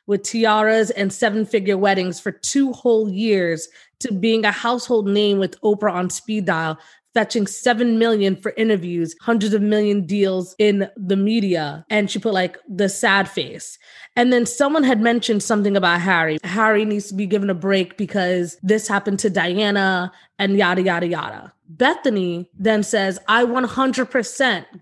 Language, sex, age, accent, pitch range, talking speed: English, female, 20-39, American, 195-240 Hz, 160 wpm